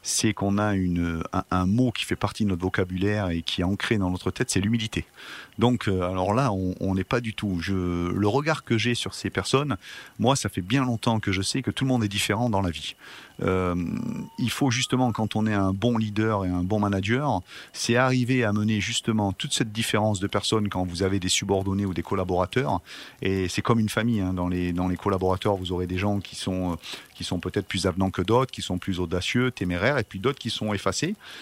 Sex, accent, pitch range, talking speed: male, French, 95-120 Hz, 235 wpm